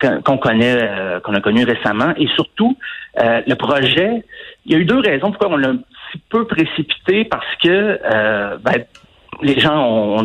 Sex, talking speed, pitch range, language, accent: male, 195 wpm, 125-185 Hz, French, French